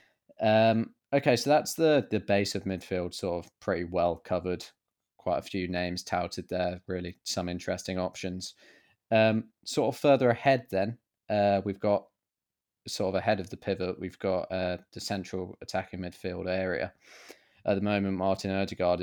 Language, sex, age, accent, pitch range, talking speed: English, male, 20-39, British, 90-100 Hz, 165 wpm